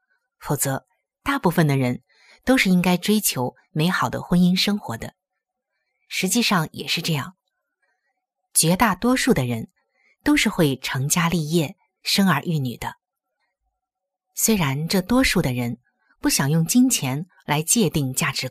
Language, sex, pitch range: Chinese, female, 150-235 Hz